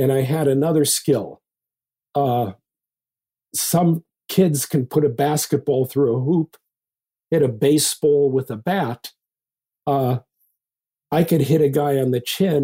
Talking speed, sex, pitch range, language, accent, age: 140 wpm, male, 115-145 Hz, English, American, 50-69